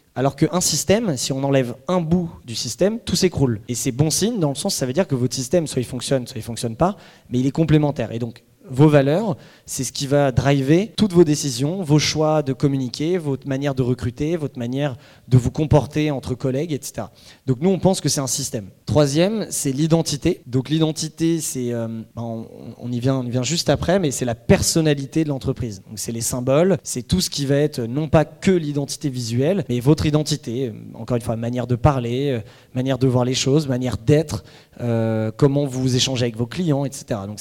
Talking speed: 220 wpm